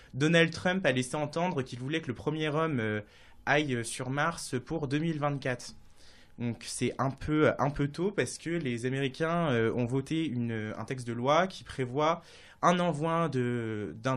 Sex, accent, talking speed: male, French, 170 wpm